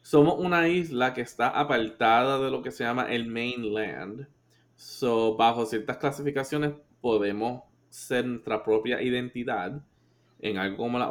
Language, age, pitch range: Spanish, 20-39, 105-140 Hz